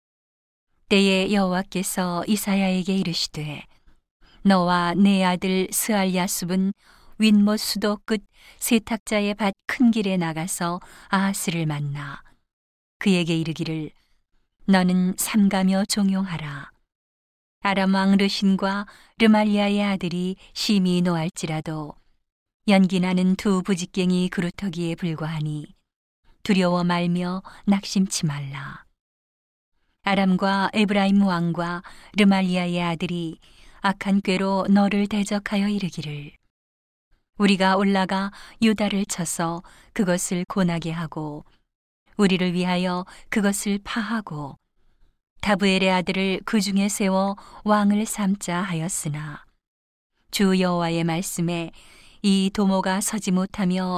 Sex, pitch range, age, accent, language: female, 175-200 Hz, 40-59, native, Korean